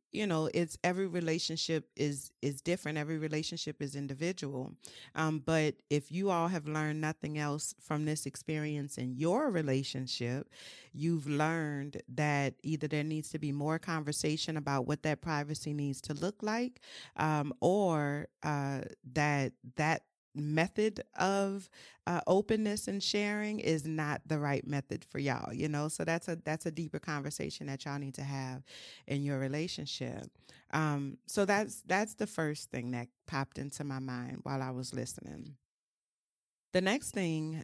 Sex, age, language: female, 40-59, English